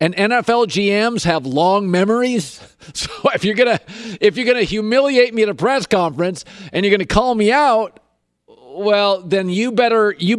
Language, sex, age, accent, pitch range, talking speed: English, male, 50-69, American, 145-210 Hz, 175 wpm